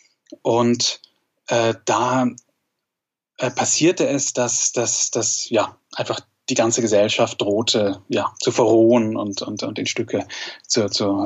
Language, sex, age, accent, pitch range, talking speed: German, male, 10-29, German, 105-125 Hz, 135 wpm